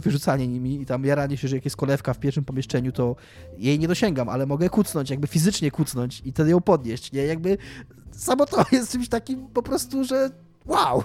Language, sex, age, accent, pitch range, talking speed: Polish, male, 20-39, native, 135-185 Hz, 205 wpm